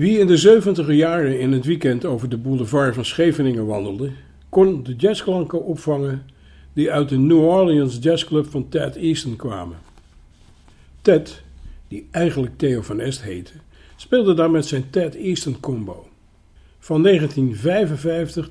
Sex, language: male, Dutch